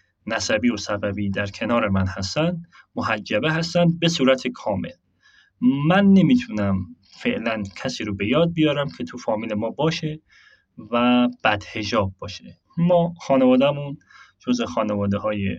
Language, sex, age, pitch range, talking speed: English, male, 30-49, 110-170 Hz, 125 wpm